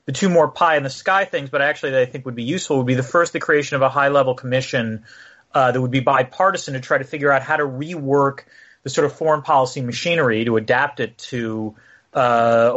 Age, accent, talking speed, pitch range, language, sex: 30-49, American, 220 wpm, 125-170 Hz, English, male